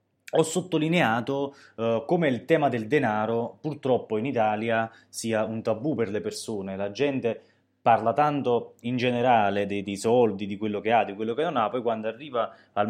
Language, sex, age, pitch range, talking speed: Italian, male, 20-39, 105-125 Hz, 175 wpm